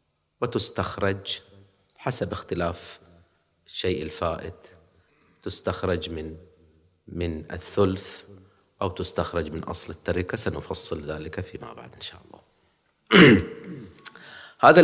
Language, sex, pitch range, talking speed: English, male, 85-120 Hz, 90 wpm